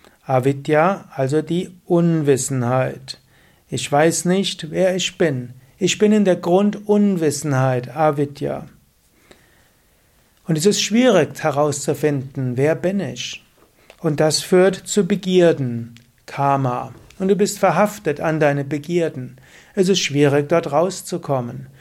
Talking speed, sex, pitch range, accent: 115 wpm, male, 140-180 Hz, German